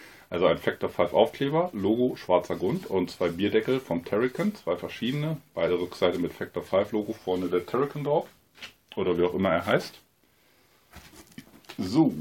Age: 30-49